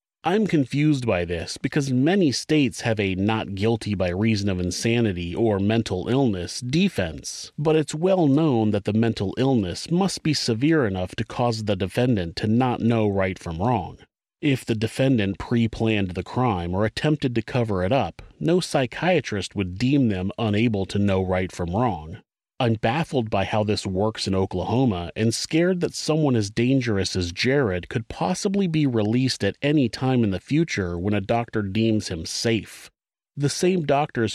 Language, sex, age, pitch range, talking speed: English, male, 30-49, 100-135 Hz, 165 wpm